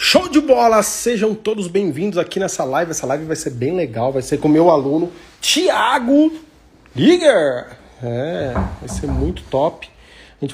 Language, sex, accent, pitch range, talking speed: Portuguese, male, Brazilian, 140-185 Hz, 165 wpm